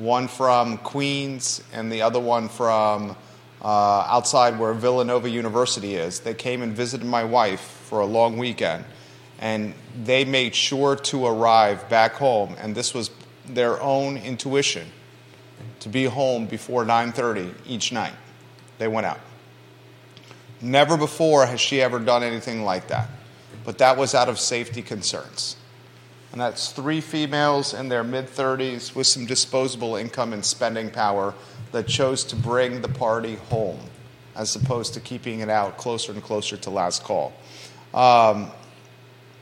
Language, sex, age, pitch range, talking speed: English, male, 30-49, 115-130 Hz, 150 wpm